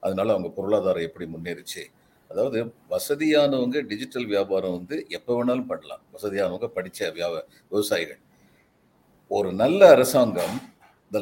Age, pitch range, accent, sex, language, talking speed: 50-69, 110-185 Hz, native, male, Tamil, 110 wpm